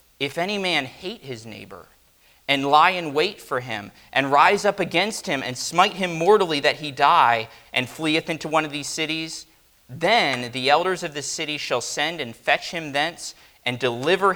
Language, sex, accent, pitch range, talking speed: English, male, American, 115-160 Hz, 190 wpm